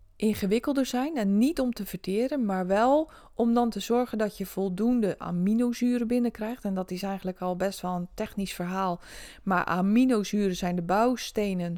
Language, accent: Dutch, Dutch